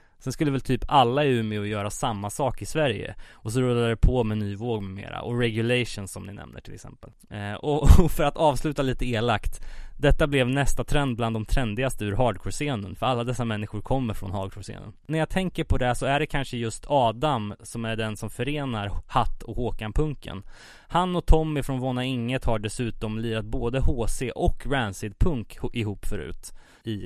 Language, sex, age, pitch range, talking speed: Swedish, male, 20-39, 105-130 Hz, 195 wpm